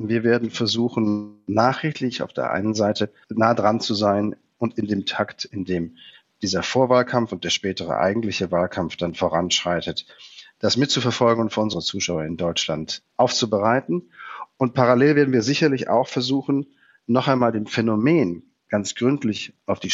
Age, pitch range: 40-59, 95-125 Hz